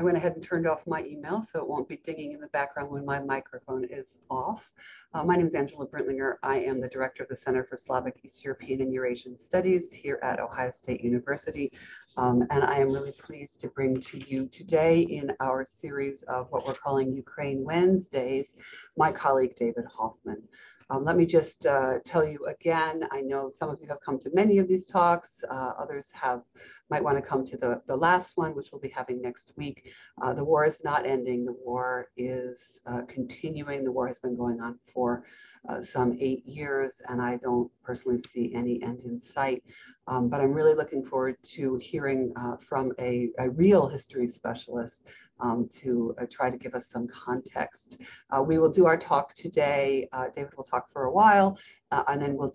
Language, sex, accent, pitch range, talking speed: English, female, American, 125-155 Hz, 205 wpm